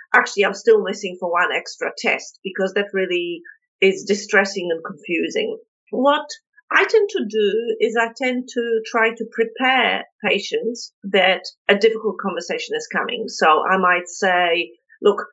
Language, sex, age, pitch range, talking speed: English, female, 40-59, 190-250 Hz, 155 wpm